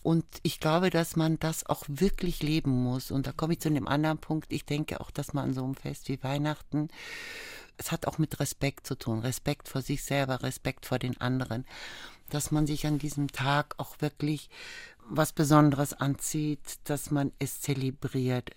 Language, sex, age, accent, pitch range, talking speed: German, female, 60-79, German, 130-150 Hz, 185 wpm